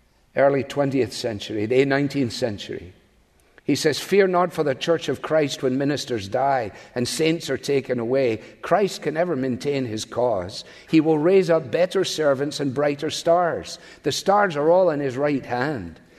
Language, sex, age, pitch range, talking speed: English, male, 50-69, 125-165 Hz, 170 wpm